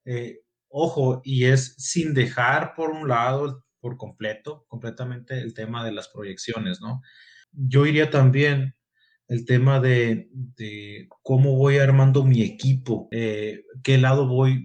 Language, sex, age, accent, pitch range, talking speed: Spanish, male, 30-49, Mexican, 110-135 Hz, 140 wpm